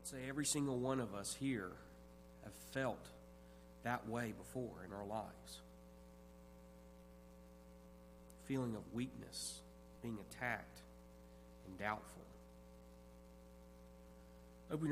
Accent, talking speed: American, 100 wpm